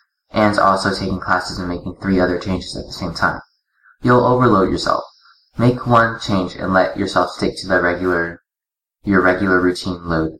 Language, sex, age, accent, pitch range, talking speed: English, male, 20-39, American, 90-115 Hz, 160 wpm